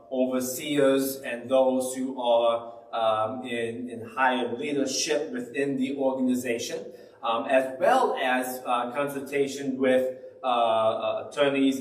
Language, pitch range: English, 120-140 Hz